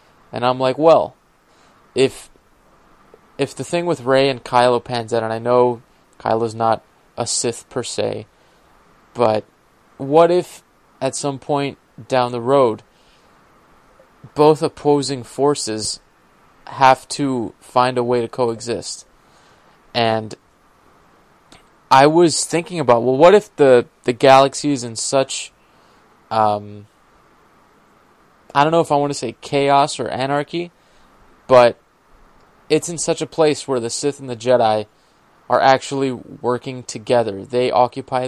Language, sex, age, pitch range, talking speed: English, male, 20-39, 120-140 Hz, 135 wpm